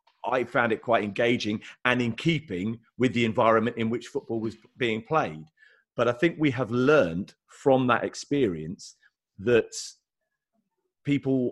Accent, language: British, English